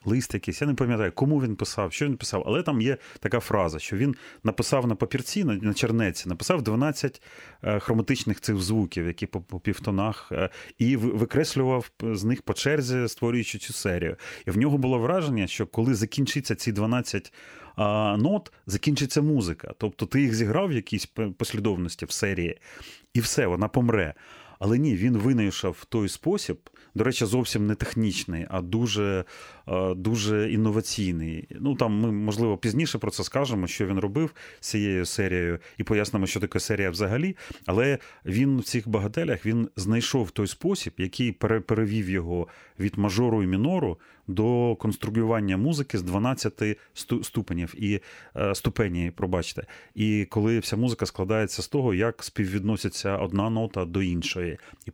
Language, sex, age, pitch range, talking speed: Ukrainian, male, 30-49, 100-120 Hz, 155 wpm